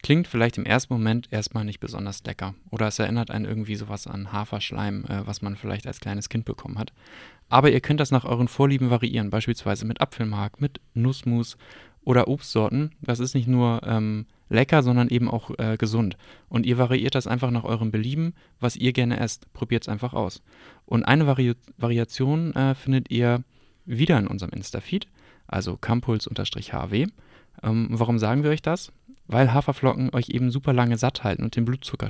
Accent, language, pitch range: German, German, 110-130 Hz